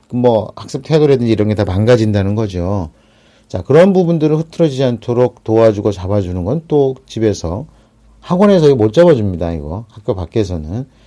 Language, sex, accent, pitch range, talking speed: English, male, Korean, 105-140 Hz, 120 wpm